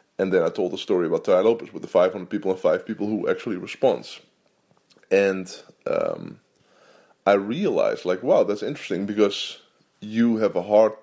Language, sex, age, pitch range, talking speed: English, male, 20-39, 95-110 Hz, 175 wpm